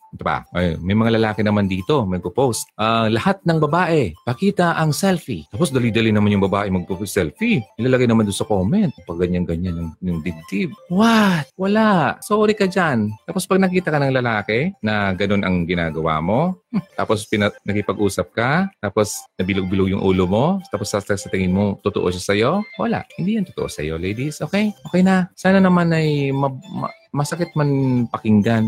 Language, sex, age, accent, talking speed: Filipino, male, 30-49, native, 170 wpm